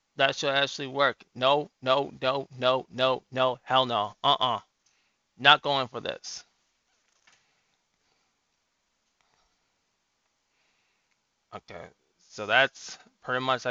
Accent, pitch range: American, 120-140 Hz